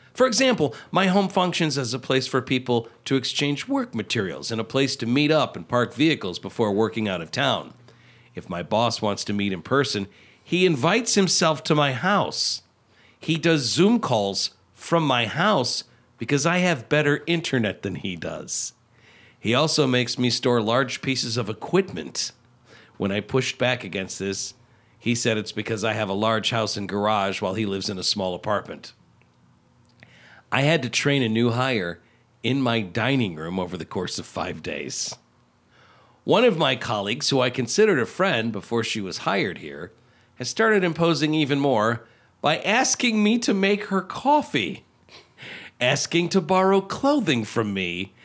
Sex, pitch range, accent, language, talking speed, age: male, 115-170 Hz, American, English, 175 wpm, 50-69